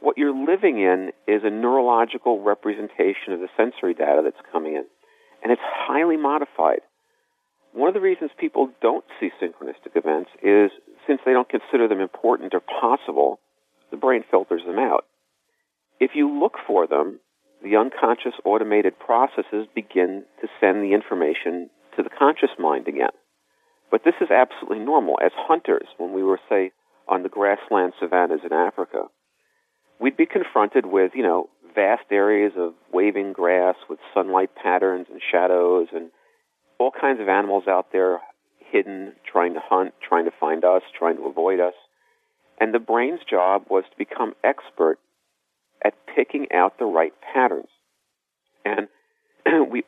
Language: English